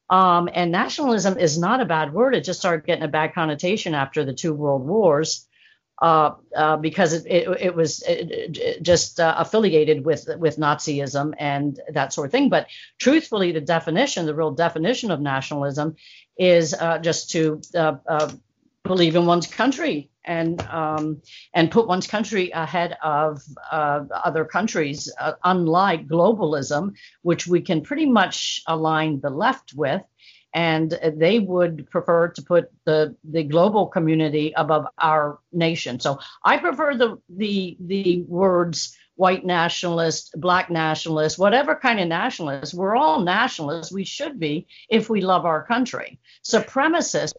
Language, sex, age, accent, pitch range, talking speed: English, female, 50-69, American, 155-185 Hz, 150 wpm